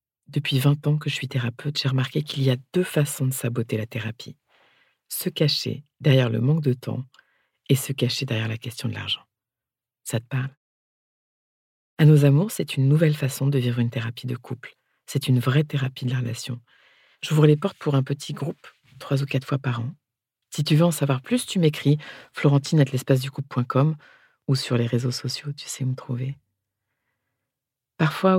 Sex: female